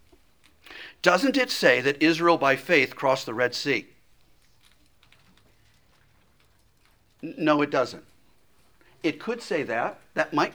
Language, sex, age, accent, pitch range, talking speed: English, male, 50-69, American, 125-185 Hz, 115 wpm